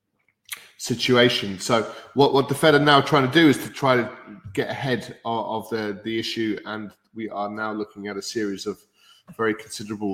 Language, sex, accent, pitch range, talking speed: English, male, British, 105-135 Hz, 195 wpm